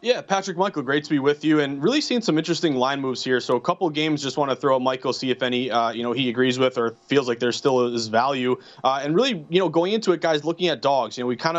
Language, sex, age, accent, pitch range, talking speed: English, male, 30-49, American, 135-170 Hz, 305 wpm